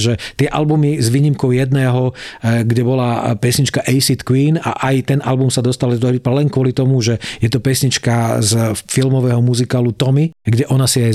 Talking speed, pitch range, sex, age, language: 170 wpm, 120-140 Hz, male, 40-59, Slovak